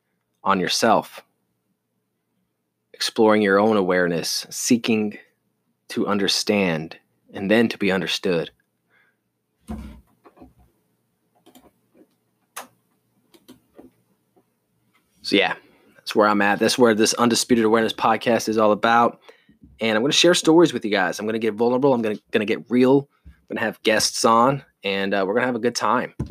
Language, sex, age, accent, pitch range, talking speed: English, male, 20-39, American, 95-120 Hz, 145 wpm